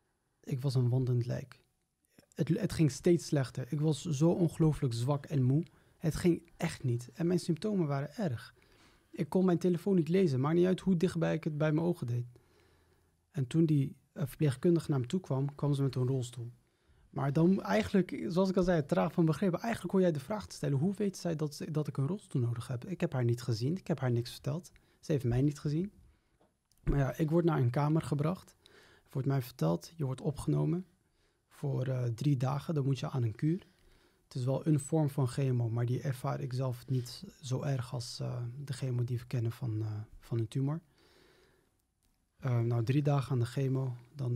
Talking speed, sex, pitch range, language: 210 wpm, male, 125-160 Hz, Dutch